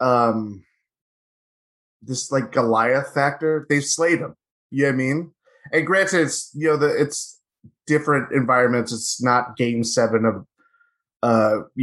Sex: male